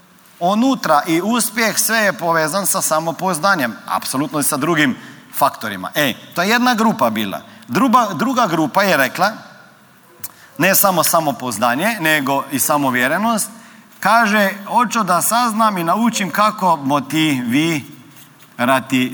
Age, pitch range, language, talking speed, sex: 40-59, 160-230 Hz, Croatian, 120 wpm, male